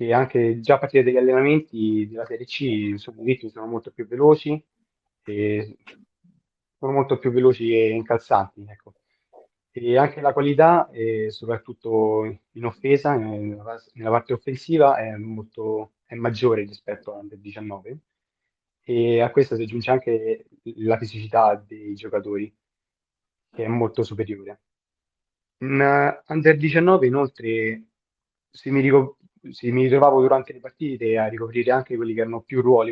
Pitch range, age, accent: 110-130 Hz, 20-39, native